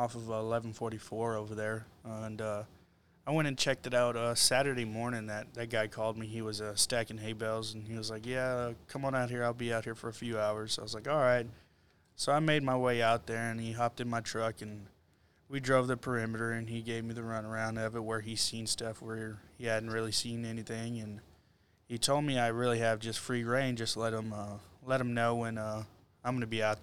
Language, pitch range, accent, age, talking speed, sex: English, 110-120 Hz, American, 20-39, 250 wpm, male